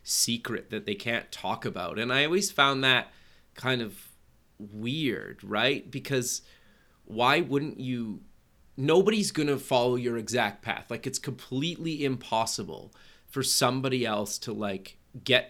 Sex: male